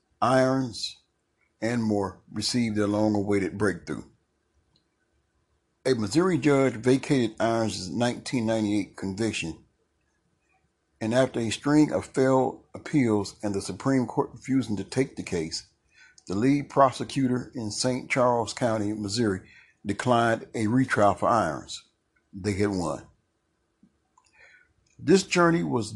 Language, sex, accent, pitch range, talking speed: English, male, American, 105-130 Hz, 115 wpm